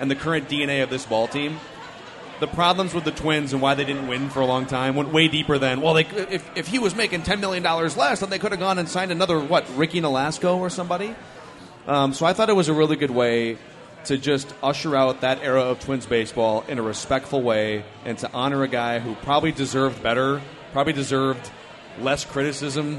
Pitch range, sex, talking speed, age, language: 130-155 Hz, male, 220 wpm, 30-49, English